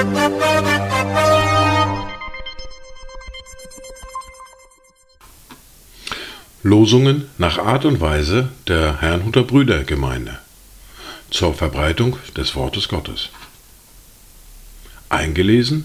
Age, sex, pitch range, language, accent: 50-69, male, 75-115 Hz, German, German